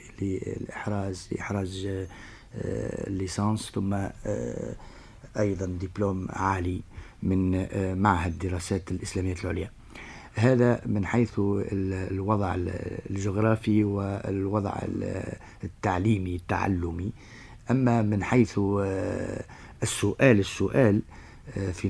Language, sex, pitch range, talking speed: Arabic, male, 95-115 Hz, 70 wpm